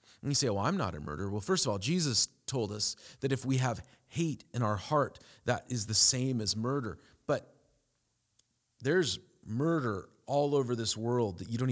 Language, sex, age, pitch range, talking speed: English, male, 40-59, 110-135 Hz, 200 wpm